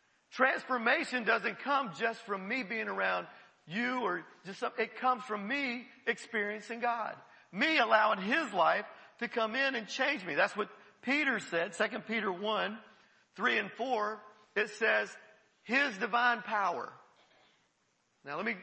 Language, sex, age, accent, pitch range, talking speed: English, male, 40-59, American, 195-230 Hz, 150 wpm